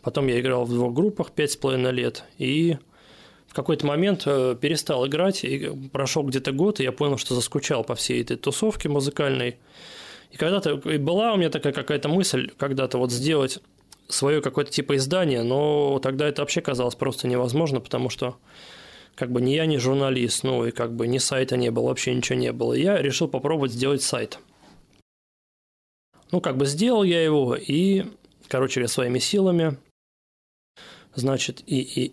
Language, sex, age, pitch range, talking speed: Russian, male, 20-39, 130-160 Hz, 170 wpm